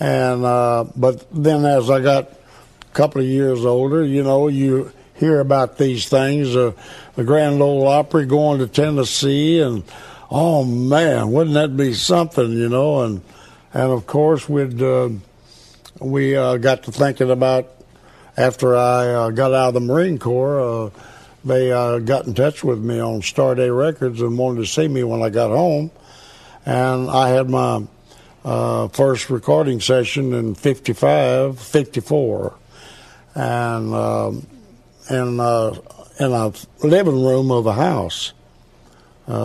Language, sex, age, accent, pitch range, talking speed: English, male, 60-79, American, 120-140 Hz, 150 wpm